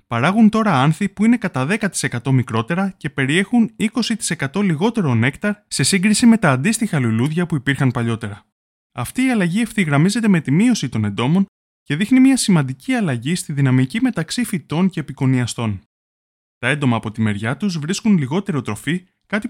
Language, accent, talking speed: Greek, native, 160 wpm